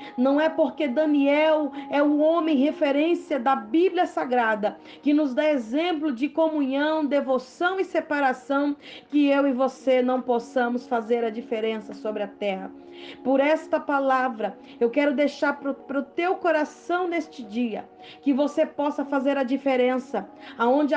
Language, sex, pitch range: Portuguese, female, 260-315 Hz